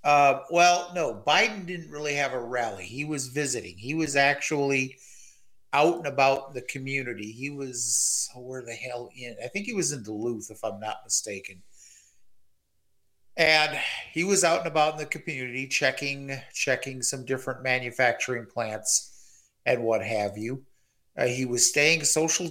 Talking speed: 165 wpm